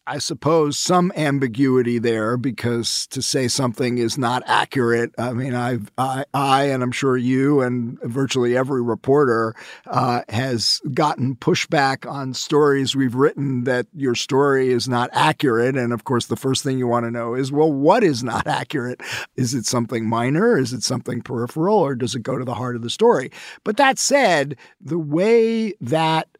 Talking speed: 180 wpm